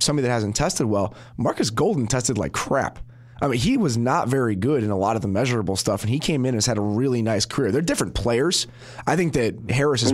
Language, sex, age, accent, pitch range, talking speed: English, male, 30-49, American, 110-140 Hz, 250 wpm